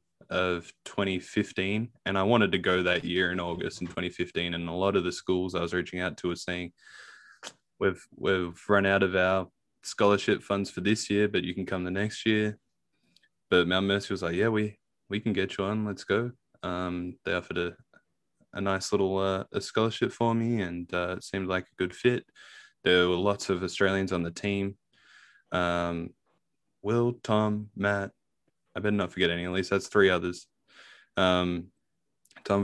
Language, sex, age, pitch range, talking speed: English, male, 20-39, 90-100 Hz, 185 wpm